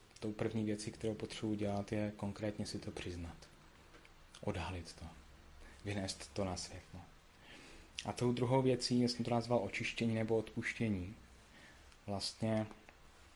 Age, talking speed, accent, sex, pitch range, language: 30-49, 125 wpm, native, male, 90-105 Hz, Czech